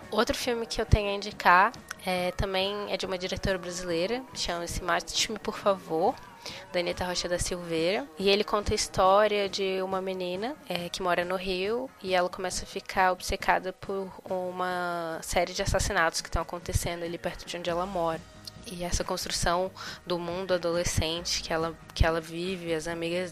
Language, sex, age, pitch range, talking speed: Portuguese, female, 10-29, 165-190 Hz, 180 wpm